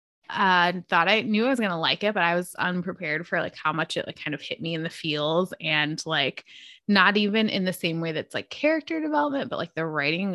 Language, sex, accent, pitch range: English, female, American, 160-205 Hz